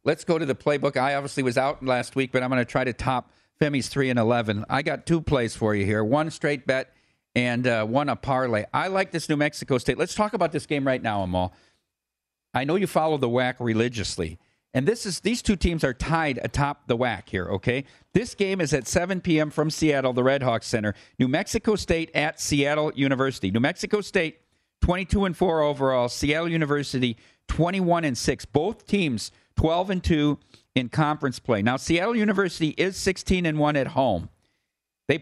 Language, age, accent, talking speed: English, 50-69, American, 185 wpm